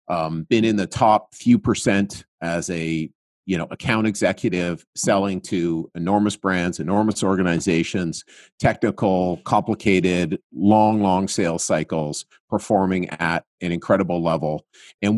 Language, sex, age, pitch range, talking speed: English, male, 50-69, 90-115 Hz, 125 wpm